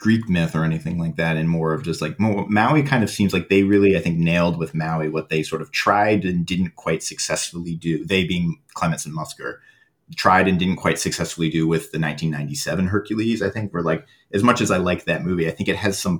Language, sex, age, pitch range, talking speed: English, male, 30-49, 80-95 Hz, 235 wpm